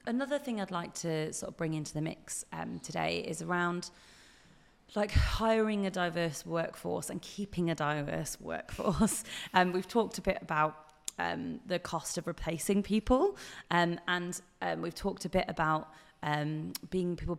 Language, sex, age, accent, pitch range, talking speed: English, female, 30-49, British, 160-195 Hz, 165 wpm